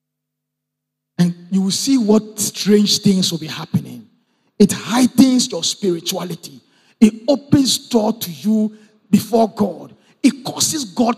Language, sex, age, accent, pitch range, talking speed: English, male, 50-69, Nigerian, 205-245 Hz, 125 wpm